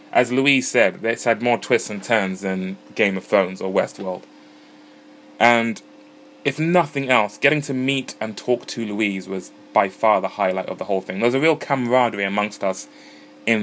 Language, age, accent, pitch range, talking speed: English, 20-39, British, 95-120 Hz, 190 wpm